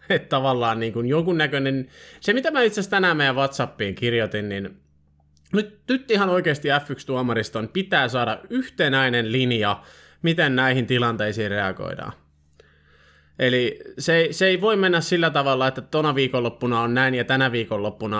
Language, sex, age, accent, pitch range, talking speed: Finnish, male, 20-39, native, 115-145 Hz, 150 wpm